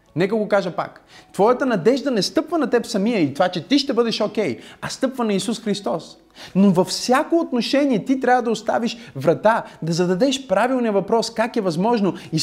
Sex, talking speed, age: male, 195 wpm, 30-49